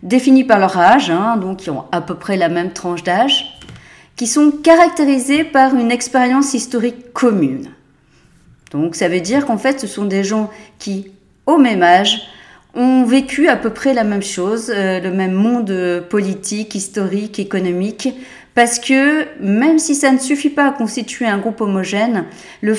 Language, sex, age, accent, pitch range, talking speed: French, female, 40-59, French, 195-255 Hz, 175 wpm